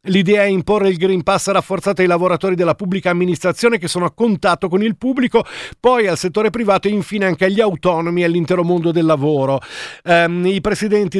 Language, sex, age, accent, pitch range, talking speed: Italian, male, 50-69, native, 160-195 Hz, 195 wpm